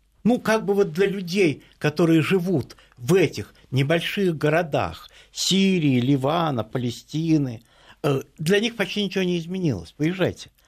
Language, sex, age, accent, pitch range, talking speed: Russian, male, 60-79, native, 115-165 Hz, 125 wpm